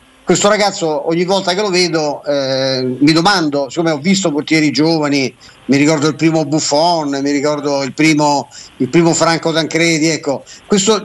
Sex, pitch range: male, 150-175 Hz